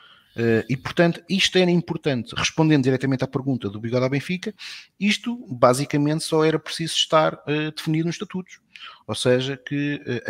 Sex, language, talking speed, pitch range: male, Portuguese, 165 wpm, 110-155 Hz